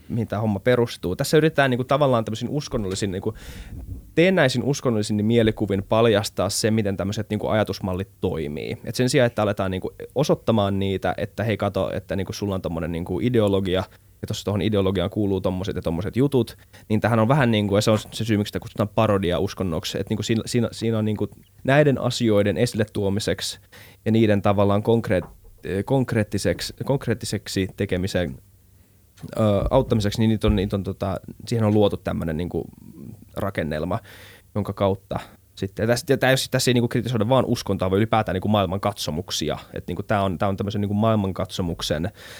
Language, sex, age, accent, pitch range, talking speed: Finnish, male, 20-39, native, 95-115 Hz, 175 wpm